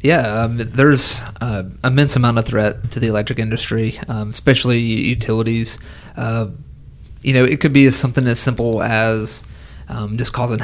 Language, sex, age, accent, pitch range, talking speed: English, male, 30-49, American, 110-125 Hz, 160 wpm